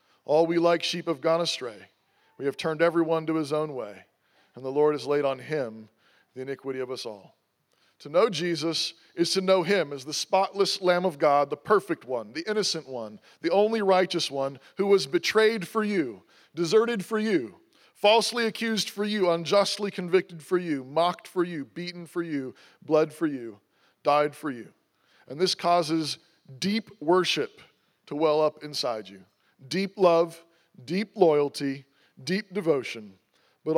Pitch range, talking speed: 140-185 Hz, 170 wpm